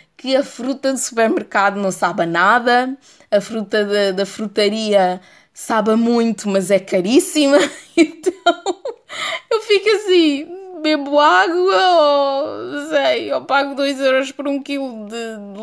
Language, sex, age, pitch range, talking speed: Portuguese, female, 20-39, 185-280 Hz, 140 wpm